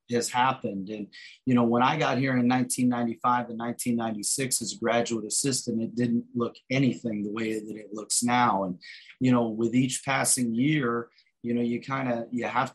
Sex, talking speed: male, 195 wpm